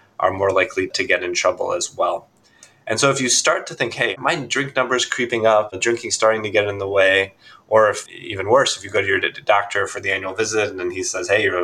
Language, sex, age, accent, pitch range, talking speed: English, male, 20-39, American, 95-120 Hz, 270 wpm